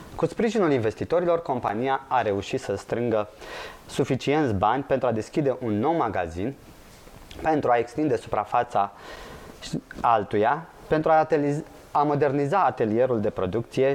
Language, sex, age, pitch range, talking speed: Romanian, male, 20-39, 115-145 Hz, 120 wpm